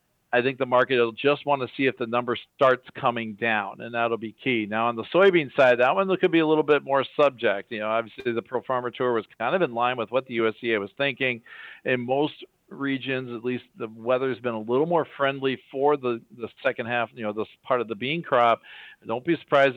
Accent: American